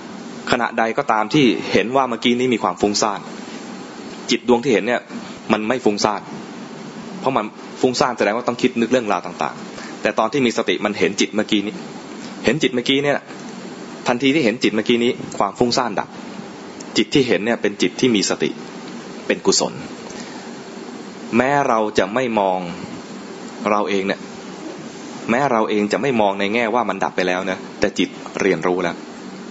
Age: 20-39